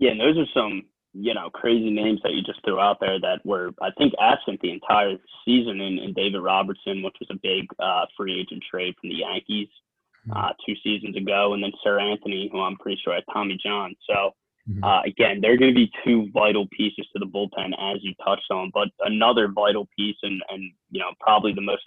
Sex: male